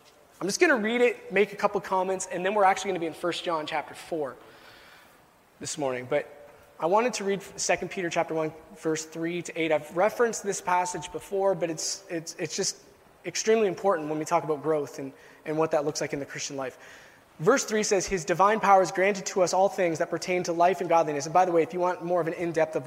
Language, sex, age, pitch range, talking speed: English, male, 20-39, 155-205 Hz, 250 wpm